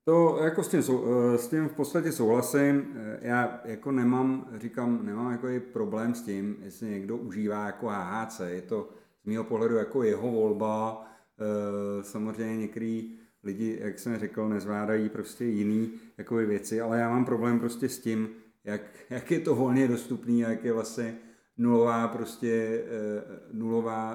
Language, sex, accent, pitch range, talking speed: Czech, male, native, 110-125 Hz, 155 wpm